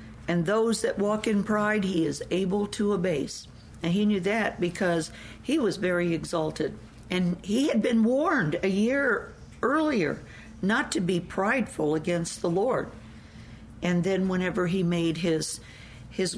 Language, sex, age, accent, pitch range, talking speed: English, female, 60-79, American, 170-215 Hz, 155 wpm